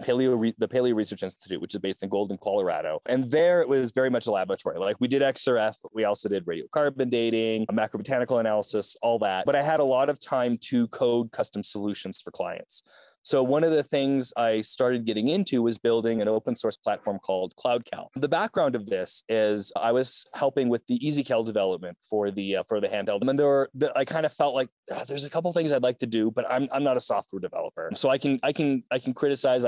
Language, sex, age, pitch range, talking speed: English, male, 30-49, 110-140 Hz, 235 wpm